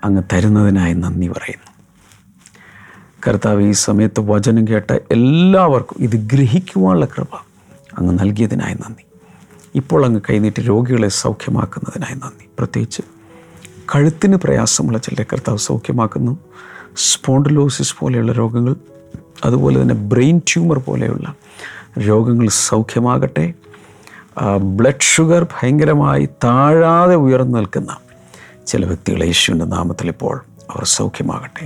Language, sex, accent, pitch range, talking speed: Malayalam, male, native, 100-135 Hz, 95 wpm